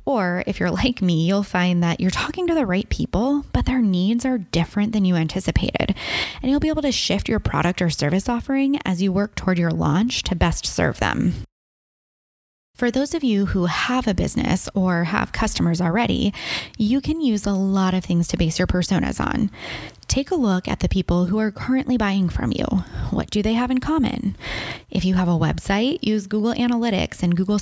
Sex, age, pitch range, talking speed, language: female, 20-39, 185-245 Hz, 205 wpm, English